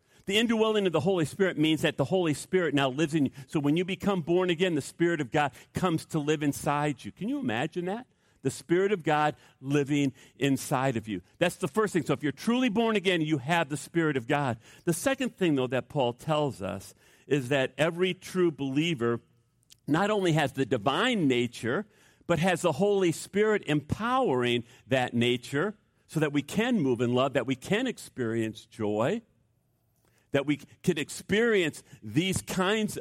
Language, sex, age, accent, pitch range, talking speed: English, male, 50-69, American, 130-180 Hz, 185 wpm